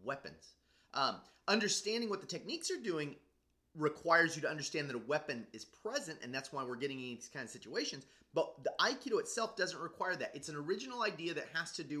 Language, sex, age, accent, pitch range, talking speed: English, male, 30-49, American, 135-185 Hz, 210 wpm